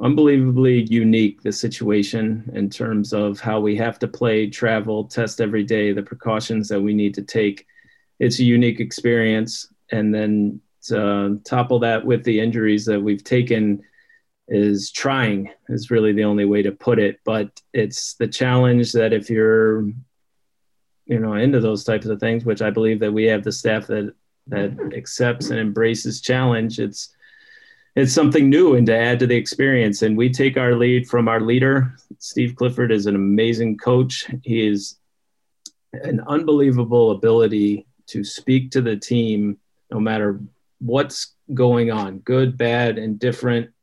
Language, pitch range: English, 105-125 Hz